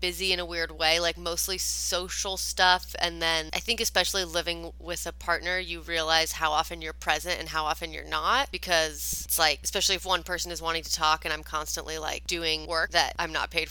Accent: American